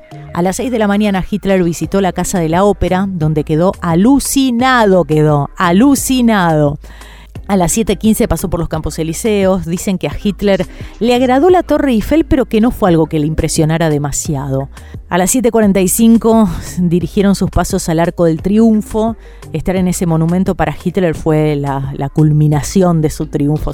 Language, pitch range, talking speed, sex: Spanish, 155-200 Hz, 170 wpm, female